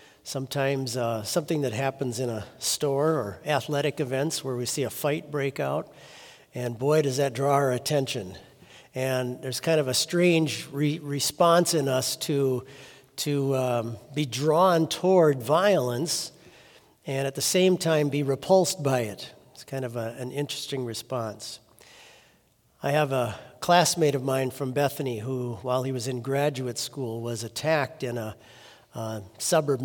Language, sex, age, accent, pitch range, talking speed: English, male, 50-69, American, 125-150 Hz, 160 wpm